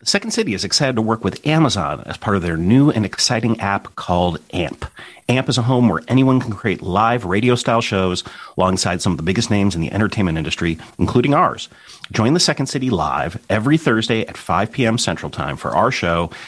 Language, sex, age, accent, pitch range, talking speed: English, male, 40-59, American, 95-125 Hz, 205 wpm